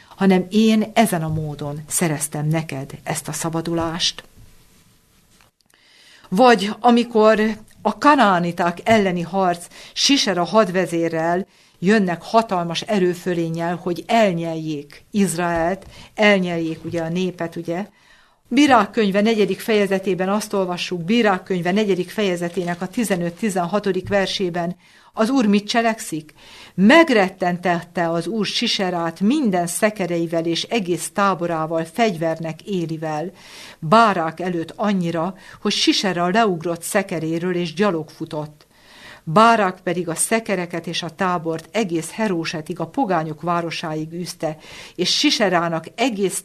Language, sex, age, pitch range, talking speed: Hungarian, female, 50-69, 165-205 Hz, 105 wpm